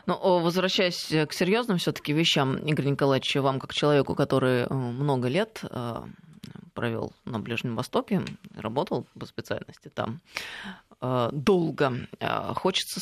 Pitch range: 135-165 Hz